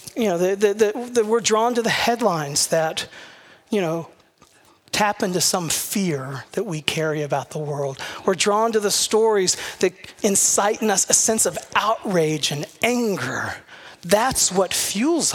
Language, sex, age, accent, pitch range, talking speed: English, male, 40-59, American, 160-215 Hz, 165 wpm